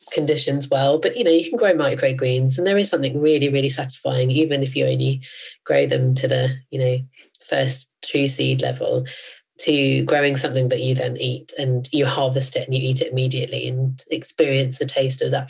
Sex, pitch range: female, 135-175 Hz